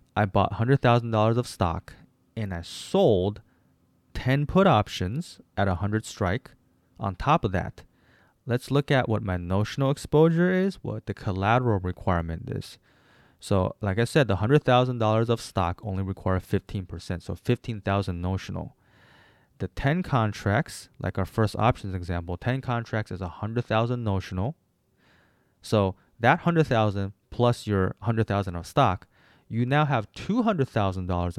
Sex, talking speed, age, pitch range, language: male, 135 wpm, 20-39, 95-125 Hz, English